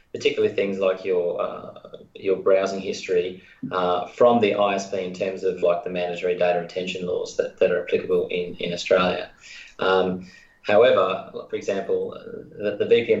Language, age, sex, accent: English, 20-39, male, Australian